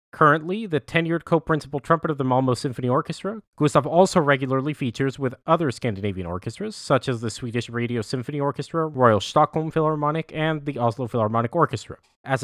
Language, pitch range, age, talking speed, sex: English, 115-140 Hz, 30-49, 165 wpm, male